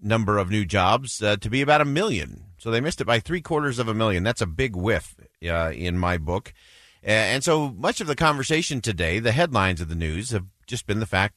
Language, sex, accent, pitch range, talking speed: English, male, American, 95-125 Hz, 240 wpm